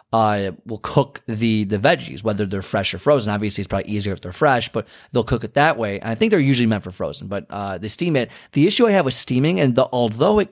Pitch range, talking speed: 100-140 Hz, 260 wpm